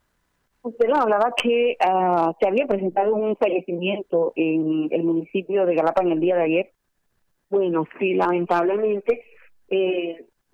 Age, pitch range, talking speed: 30-49, 170-195 Hz, 130 wpm